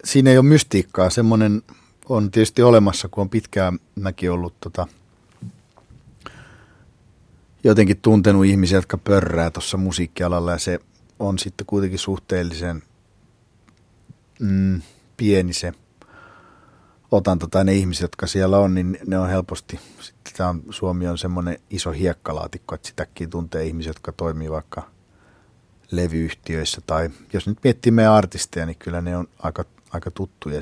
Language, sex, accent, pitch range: Finnish, male, native, 85-110 Hz